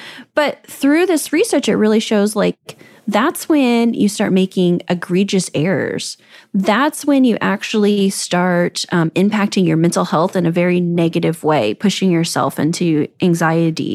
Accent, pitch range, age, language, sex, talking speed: American, 180-250 Hz, 20-39, English, female, 145 wpm